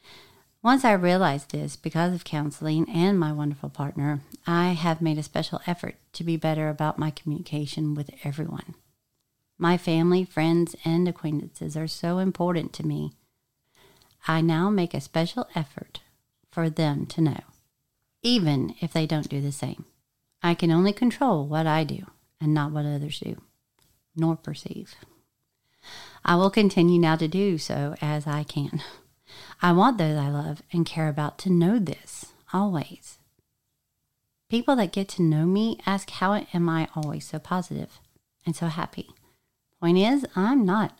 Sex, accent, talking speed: female, American, 160 wpm